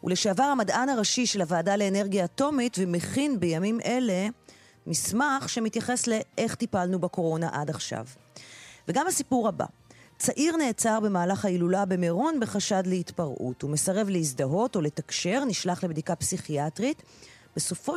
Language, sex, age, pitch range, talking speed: Hebrew, female, 30-49, 160-225 Hz, 120 wpm